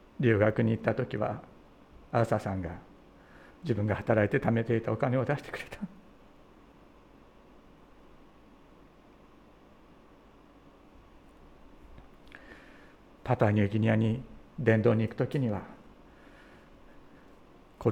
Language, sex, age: Japanese, male, 60-79